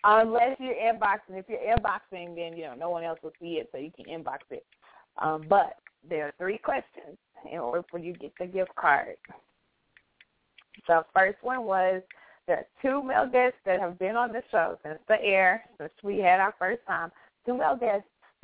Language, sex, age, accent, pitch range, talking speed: English, female, 20-39, American, 175-230 Hz, 205 wpm